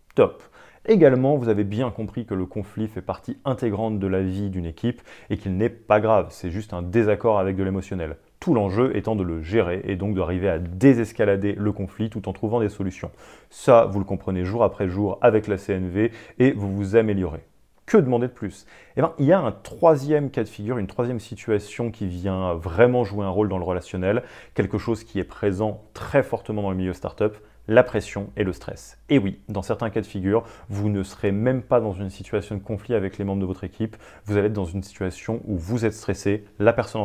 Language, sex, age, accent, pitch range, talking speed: French, male, 30-49, French, 95-115 Hz, 225 wpm